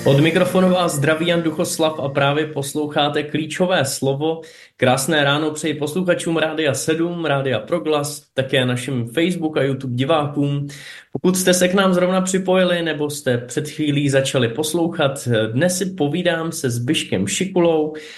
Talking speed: 145 wpm